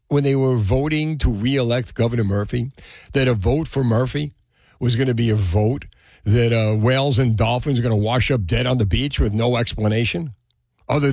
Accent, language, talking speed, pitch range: American, English, 200 wpm, 120-175 Hz